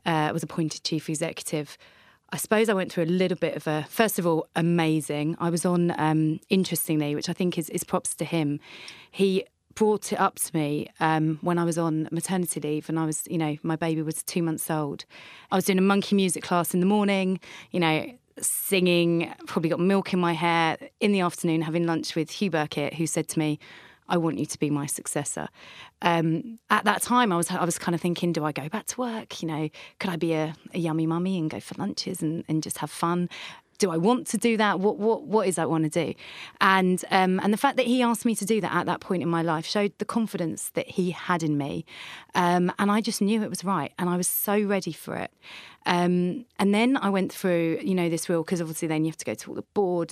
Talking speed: 245 wpm